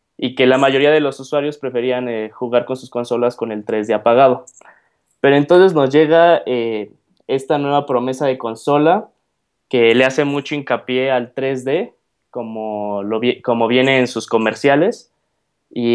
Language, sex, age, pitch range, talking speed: Spanish, male, 20-39, 120-150 Hz, 160 wpm